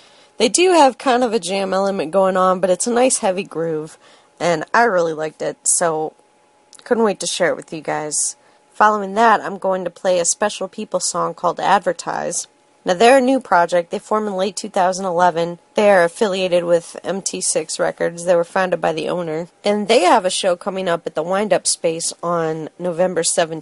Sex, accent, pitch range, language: female, American, 175-220 Hz, English